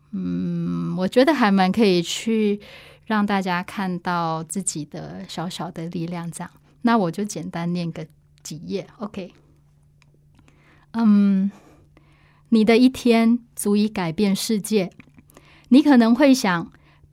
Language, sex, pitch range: Chinese, female, 175-225 Hz